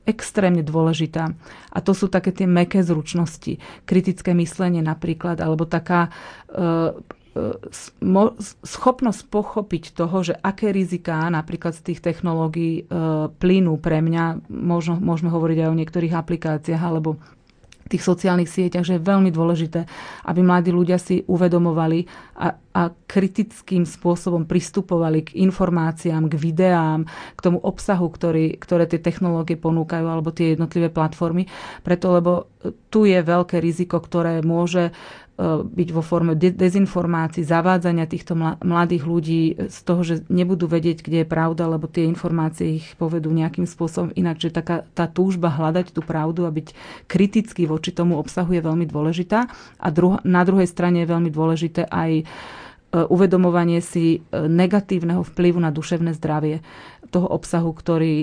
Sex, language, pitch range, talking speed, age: female, Slovak, 165-180 Hz, 140 wpm, 30-49